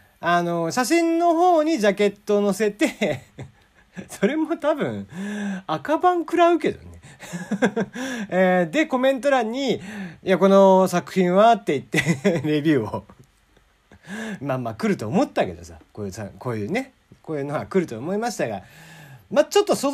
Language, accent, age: Japanese, native, 40-59